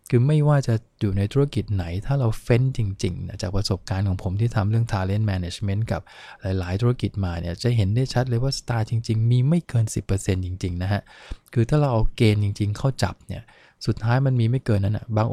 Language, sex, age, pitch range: English, male, 20-39, 100-120 Hz